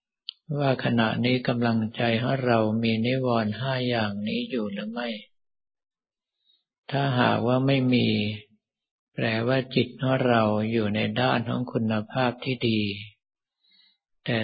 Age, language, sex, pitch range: 60-79, Thai, male, 110-125 Hz